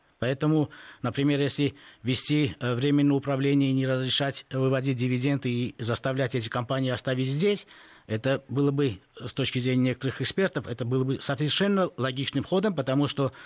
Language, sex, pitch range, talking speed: Russian, male, 120-145 Hz, 145 wpm